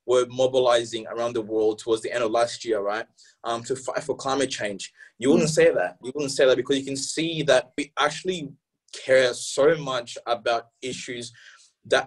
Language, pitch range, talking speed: English, 130-170 Hz, 195 wpm